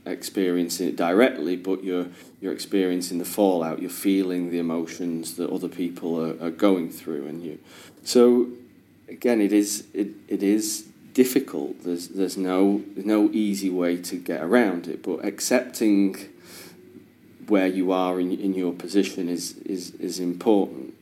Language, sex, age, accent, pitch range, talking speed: English, male, 30-49, British, 90-100 Hz, 150 wpm